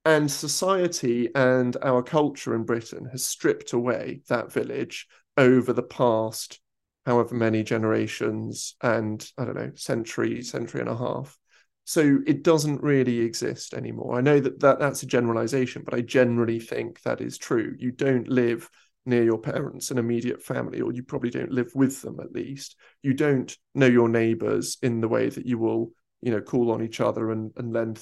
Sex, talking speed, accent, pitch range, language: male, 180 wpm, British, 115-140 Hz, English